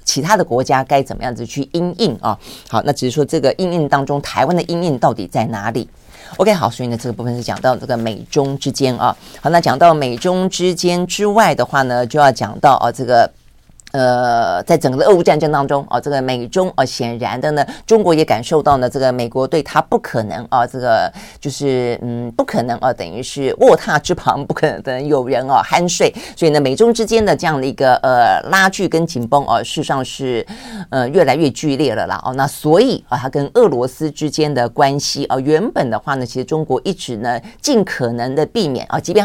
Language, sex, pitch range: Chinese, female, 125-170 Hz